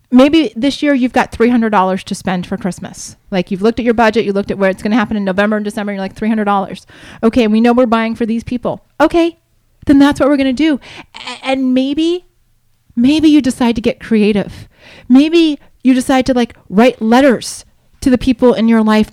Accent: American